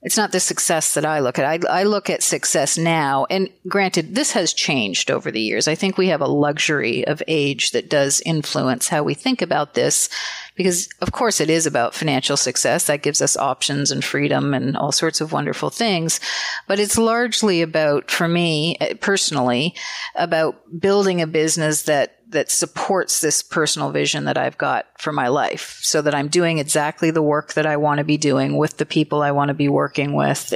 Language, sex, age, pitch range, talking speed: English, female, 40-59, 150-195 Hz, 200 wpm